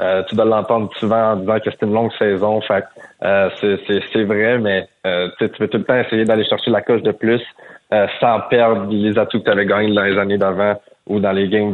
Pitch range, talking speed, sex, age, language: 95-110 Hz, 250 wpm, male, 20-39, French